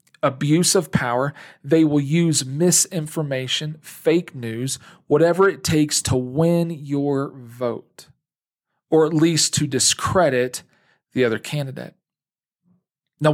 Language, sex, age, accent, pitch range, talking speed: English, male, 40-59, American, 135-165 Hz, 110 wpm